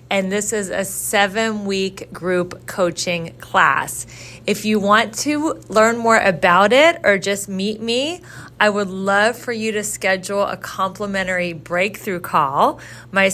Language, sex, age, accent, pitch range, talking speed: English, female, 30-49, American, 180-210 Hz, 145 wpm